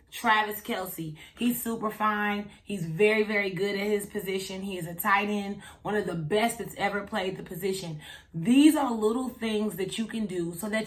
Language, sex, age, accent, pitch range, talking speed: English, female, 30-49, American, 200-245 Hz, 200 wpm